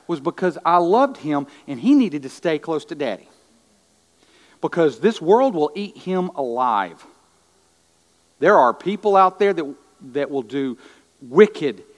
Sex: male